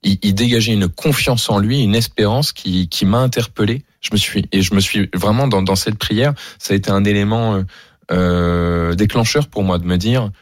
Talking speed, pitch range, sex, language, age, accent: 205 wpm, 85-105 Hz, male, French, 20-39, French